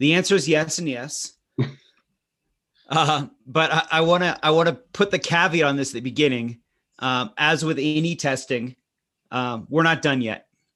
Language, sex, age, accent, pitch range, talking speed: English, male, 30-49, American, 130-155 Hz, 180 wpm